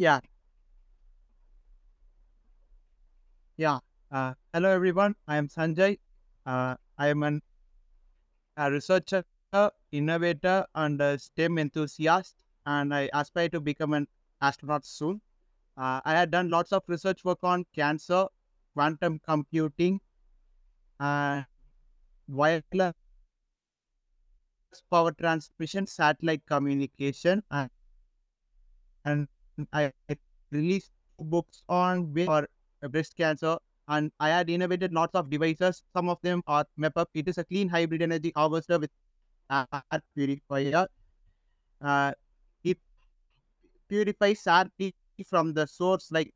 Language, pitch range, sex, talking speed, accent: English, 145-175 Hz, male, 105 wpm, Indian